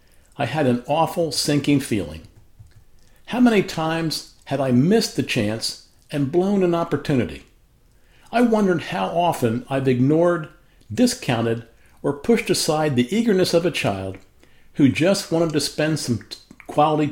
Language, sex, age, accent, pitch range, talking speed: English, male, 50-69, American, 115-180 Hz, 140 wpm